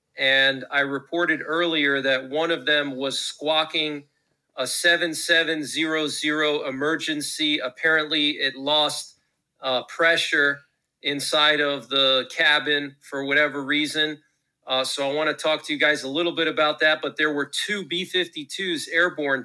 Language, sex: English, male